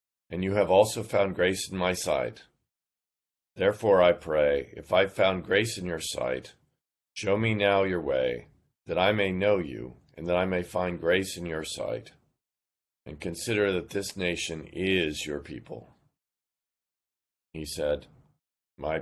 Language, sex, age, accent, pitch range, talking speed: English, male, 50-69, American, 75-100 Hz, 155 wpm